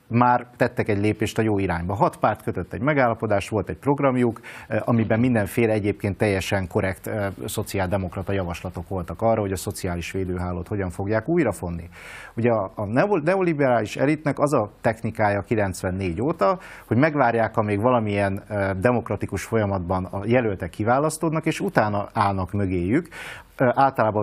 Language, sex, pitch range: Hungarian, male, 95-125 Hz